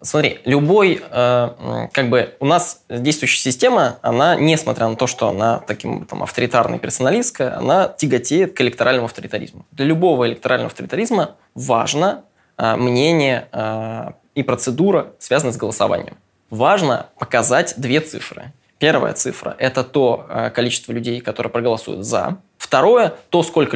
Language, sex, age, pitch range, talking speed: Russian, male, 20-39, 115-140 Hz, 120 wpm